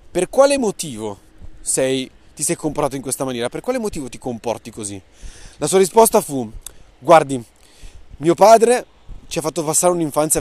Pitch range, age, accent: 120-180 Hz, 20-39, native